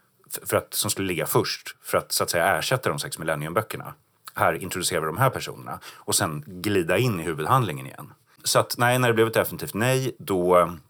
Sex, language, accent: male, Swedish, native